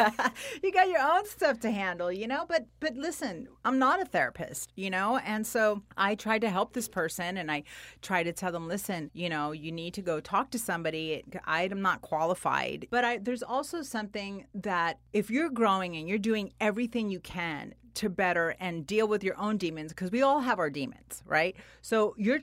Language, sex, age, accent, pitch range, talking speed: English, female, 30-49, American, 170-220 Hz, 205 wpm